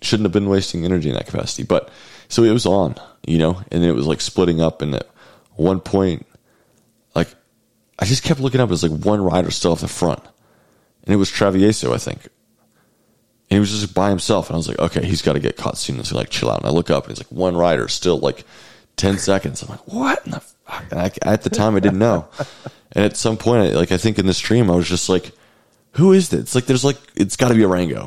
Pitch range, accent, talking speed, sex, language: 85-105 Hz, American, 260 wpm, male, English